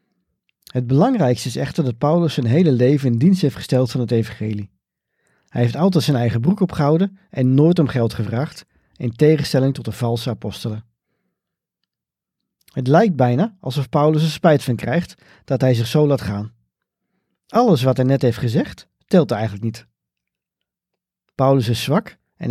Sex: male